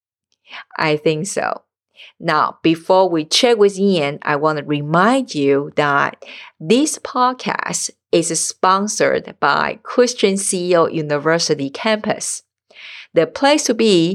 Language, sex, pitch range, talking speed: English, female, 155-215 Hz, 120 wpm